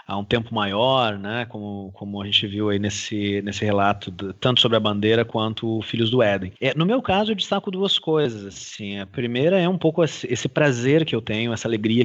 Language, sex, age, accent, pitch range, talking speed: Portuguese, male, 30-49, Brazilian, 110-145 Hz, 230 wpm